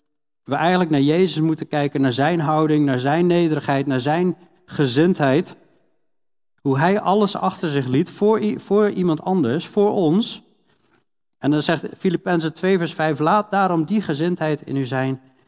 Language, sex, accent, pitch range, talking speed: Dutch, male, Dutch, 130-175 Hz, 160 wpm